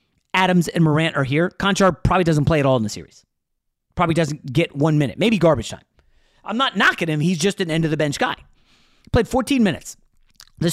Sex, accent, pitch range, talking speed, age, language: male, American, 135-190 Hz, 195 wpm, 30-49, English